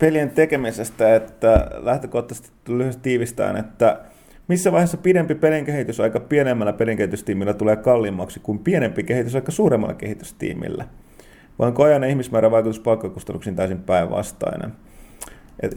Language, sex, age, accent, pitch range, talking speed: Finnish, male, 30-49, native, 105-140 Hz, 120 wpm